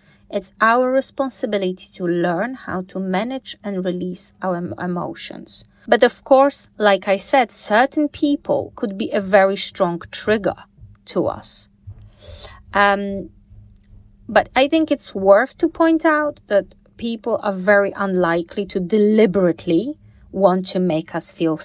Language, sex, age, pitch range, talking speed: English, female, 30-49, 165-220 Hz, 140 wpm